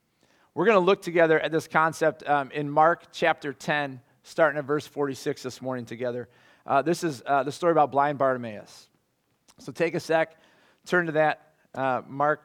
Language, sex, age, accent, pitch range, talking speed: English, male, 40-59, American, 130-180 Hz, 185 wpm